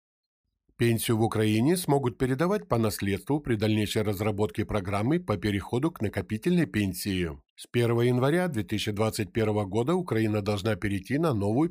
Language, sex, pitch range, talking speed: Ukrainian, male, 105-130 Hz, 135 wpm